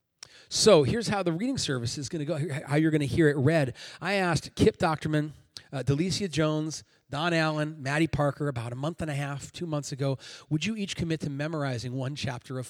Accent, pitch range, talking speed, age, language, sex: American, 135-170 Hz, 215 wpm, 30-49, English, male